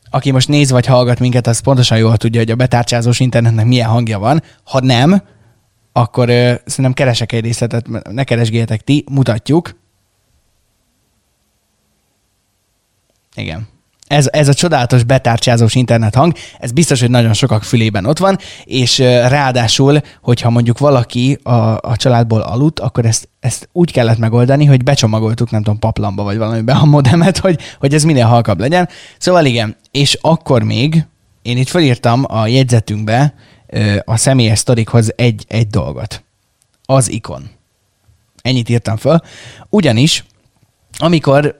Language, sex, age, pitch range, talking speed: Hungarian, male, 20-39, 115-140 Hz, 140 wpm